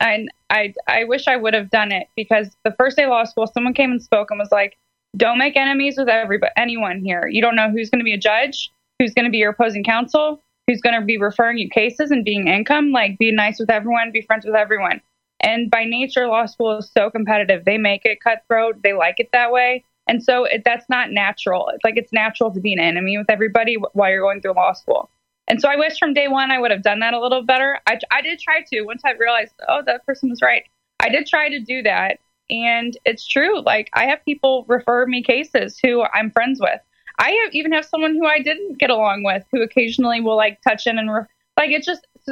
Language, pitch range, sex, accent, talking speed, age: English, 215-260 Hz, female, American, 250 wpm, 20-39